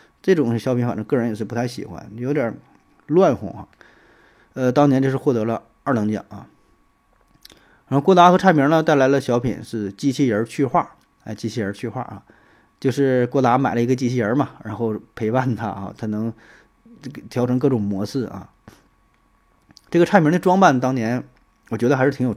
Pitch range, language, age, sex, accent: 115-140 Hz, Chinese, 20-39, male, native